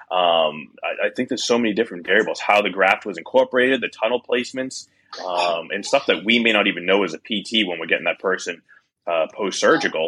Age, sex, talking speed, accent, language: 30-49, male, 215 wpm, American, English